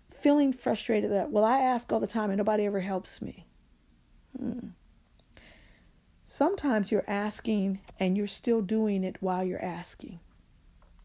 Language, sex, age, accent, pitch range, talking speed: English, female, 40-59, American, 185-225 Hz, 140 wpm